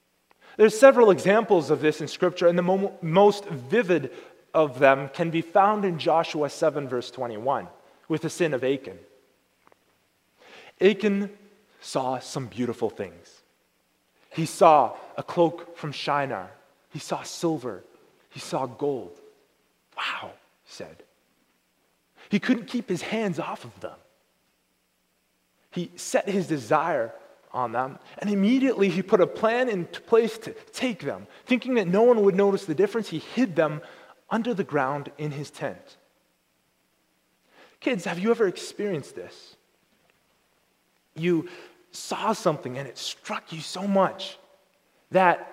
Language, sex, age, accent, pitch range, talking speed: English, male, 30-49, American, 150-210 Hz, 135 wpm